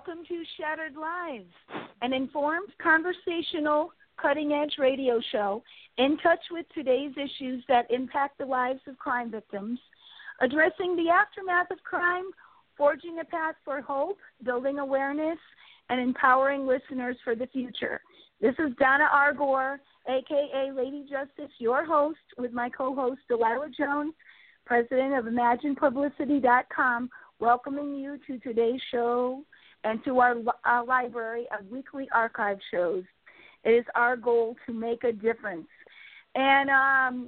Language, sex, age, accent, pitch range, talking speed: English, female, 50-69, American, 250-300 Hz, 130 wpm